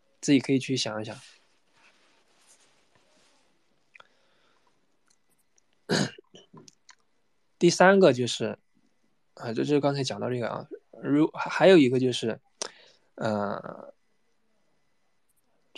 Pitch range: 115-140 Hz